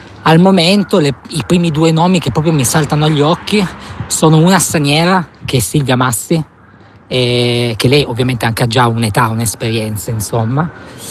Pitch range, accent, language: 125-160 Hz, native, Italian